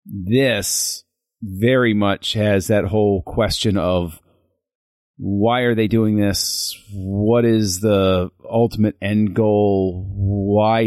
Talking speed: 110 wpm